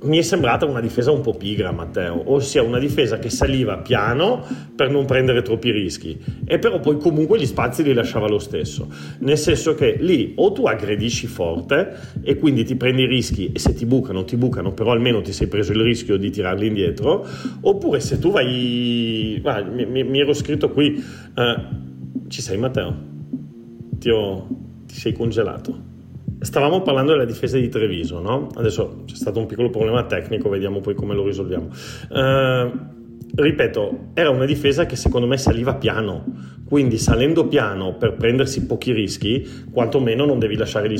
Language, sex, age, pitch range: Italian, male, 40-59, 105-130 Hz